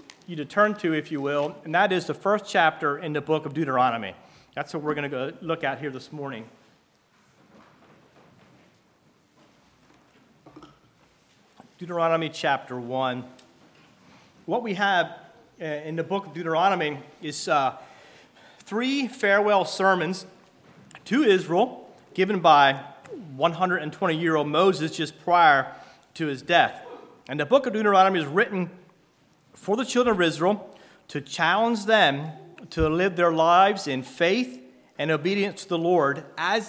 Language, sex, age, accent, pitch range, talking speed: English, male, 40-59, American, 150-195 Hz, 135 wpm